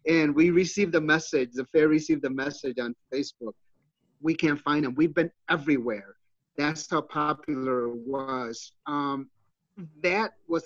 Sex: male